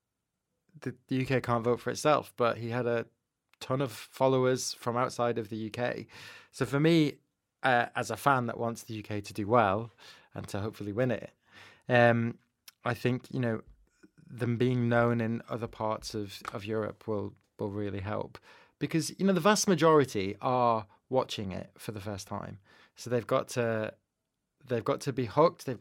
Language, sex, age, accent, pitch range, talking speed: English, male, 20-39, British, 110-140 Hz, 180 wpm